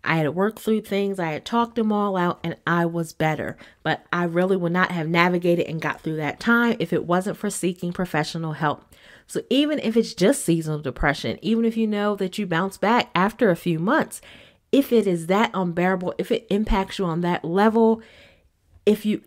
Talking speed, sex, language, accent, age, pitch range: 210 wpm, female, English, American, 30-49, 165-220 Hz